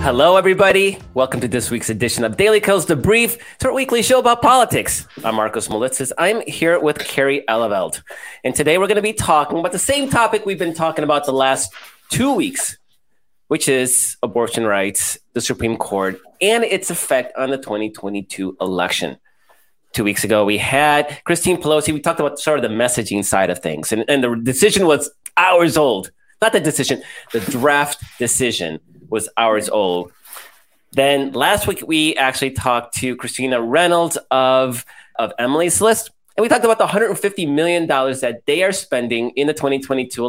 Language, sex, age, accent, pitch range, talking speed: English, male, 30-49, American, 120-170 Hz, 175 wpm